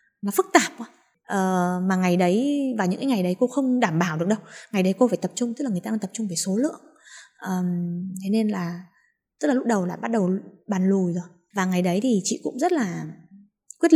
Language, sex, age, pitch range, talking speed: Vietnamese, female, 20-39, 185-245 Hz, 245 wpm